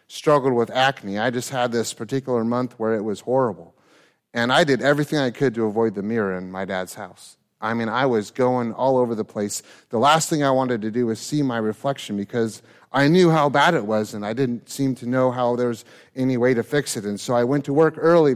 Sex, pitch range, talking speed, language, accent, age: male, 110-140 Hz, 240 wpm, English, American, 30-49